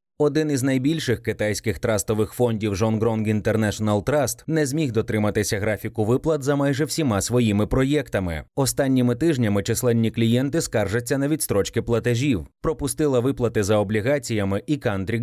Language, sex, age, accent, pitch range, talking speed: Ukrainian, male, 20-39, native, 105-140 Hz, 135 wpm